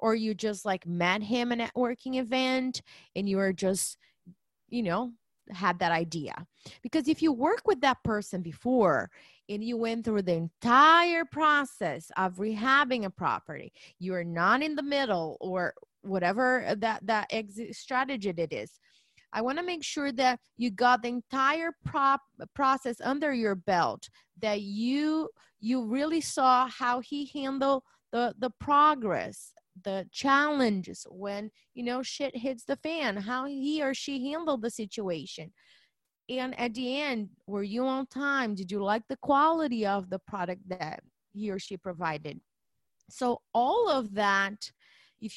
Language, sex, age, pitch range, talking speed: English, female, 30-49, 200-275 Hz, 160 wpm